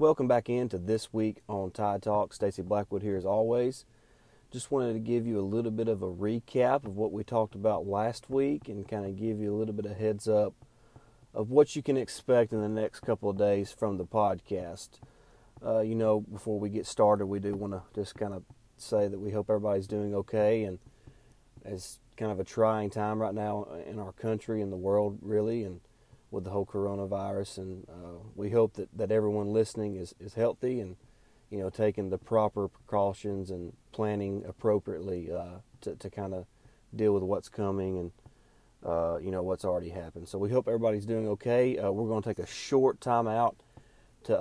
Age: 30-49